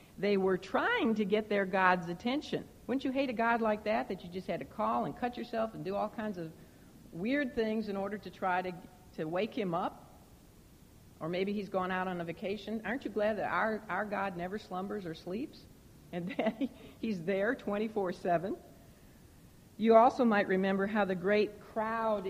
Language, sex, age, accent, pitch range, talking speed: English, female, 60-79, American, 180-225 Hz, 195 wpm